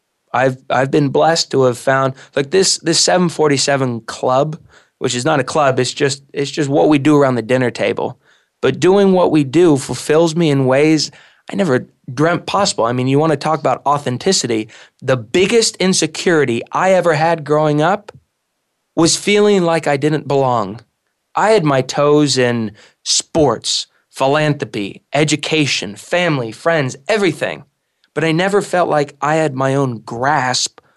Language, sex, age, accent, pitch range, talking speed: English, male, 20-39, American, 130-165 Hz, 165 wpm